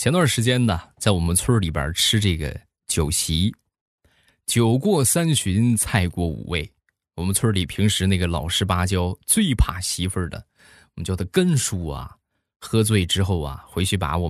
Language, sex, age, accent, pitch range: Chinese, male, 20-39, native, 90-120 Hz